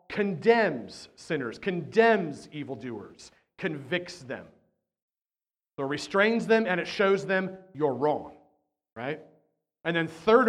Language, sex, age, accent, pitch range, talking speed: English, male, 40-59, American, 145-205 Hz, 115 wpm